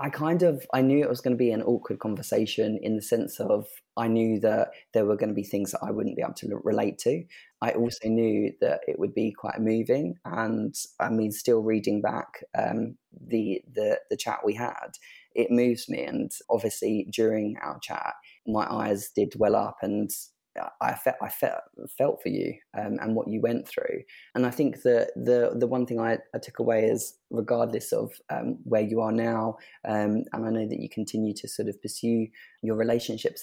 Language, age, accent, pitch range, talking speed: English, 20-39, British, 110-120 Hz, 205 wpm